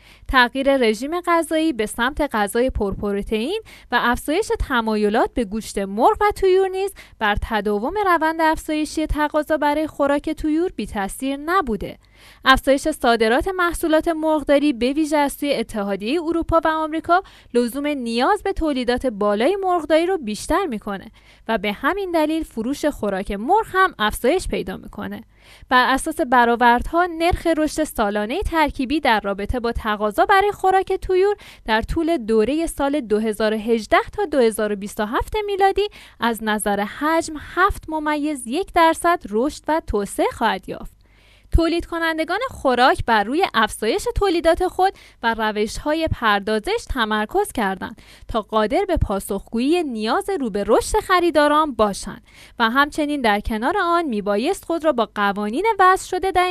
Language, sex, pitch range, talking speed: Persian, female, 225-345 Hz, 135 wpm